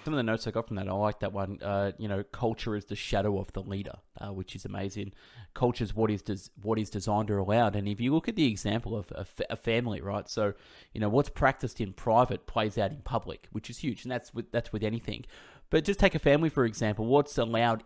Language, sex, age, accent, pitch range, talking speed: English, male, 20-39, Australian, 105-120 Hz, 250 wpm